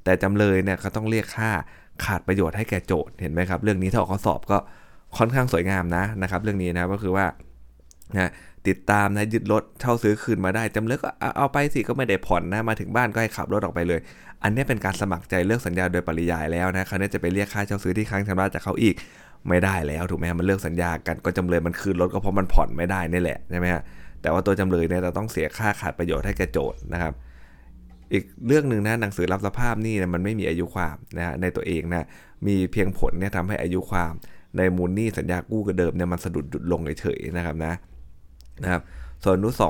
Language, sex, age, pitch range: Thai, male, 20-39, 85-105 Hz